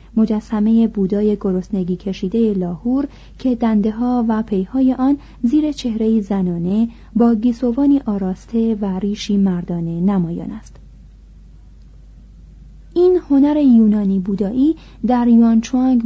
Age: 30-49